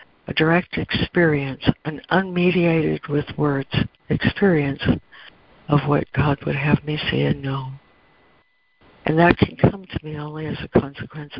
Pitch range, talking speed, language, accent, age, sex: 140-165 Hz, 140 wpm, English, American, 60-79, female